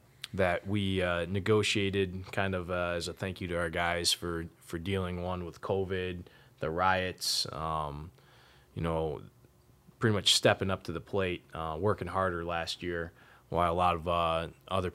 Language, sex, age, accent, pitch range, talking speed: English, male, 20-39, American, 85-100 Hz, 175 wpm